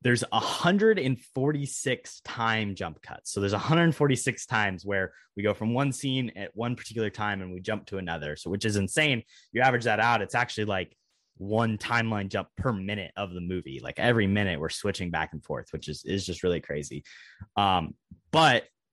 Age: 20-39